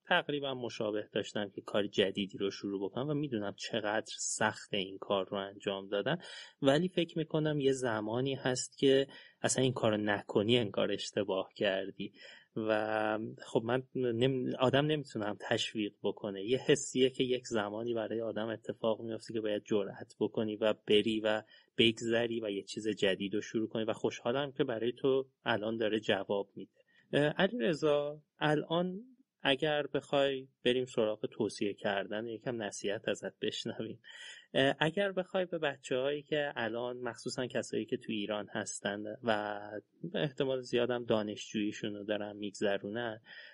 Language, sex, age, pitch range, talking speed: Persian, male, 30-49, 105-140 Hz, 145 wpm